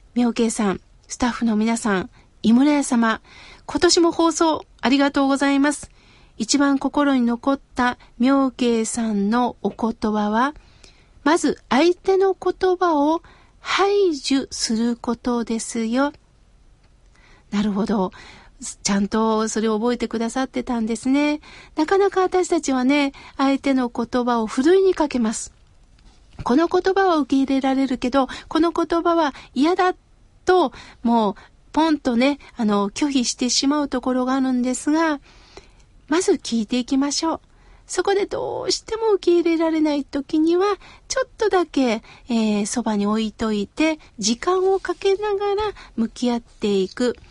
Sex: female